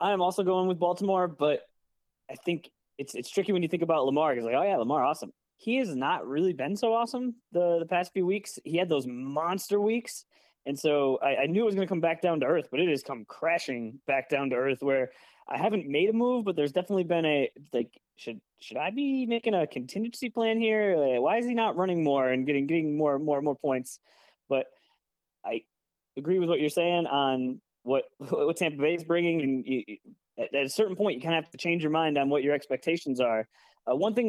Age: 20-39